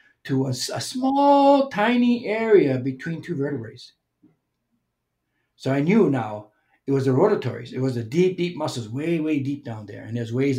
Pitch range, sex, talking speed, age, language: 120-155 Hz, male, 175 wpm, 60-79, English